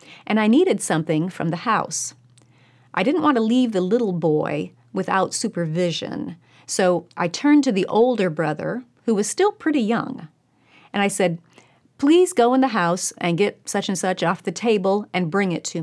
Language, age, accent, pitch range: English, 40-59, American, 165-225 Hz